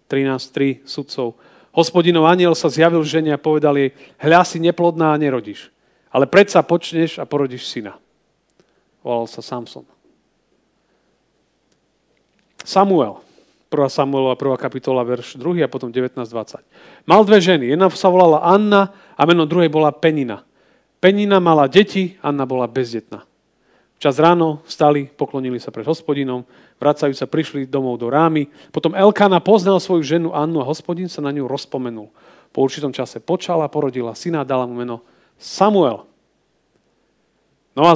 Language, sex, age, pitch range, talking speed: Slovak, male, 40-59, 135-170 Hz, 140 wpm